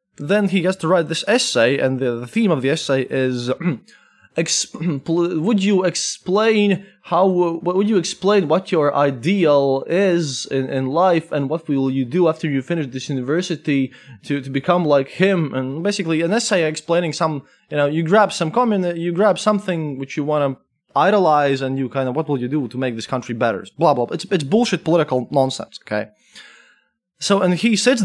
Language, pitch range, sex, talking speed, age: English, 135-185 Hz, male, 195 wpm, 20-39